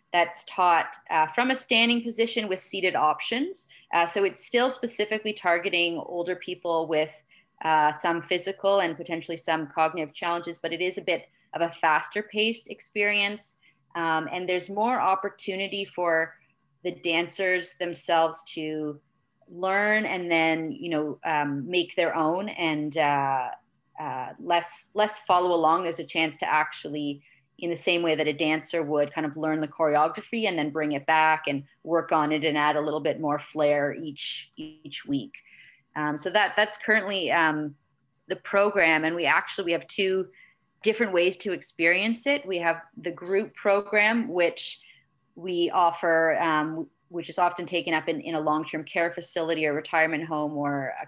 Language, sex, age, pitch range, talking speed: English, female, 30-49, 155-195 Hz, 170 wpm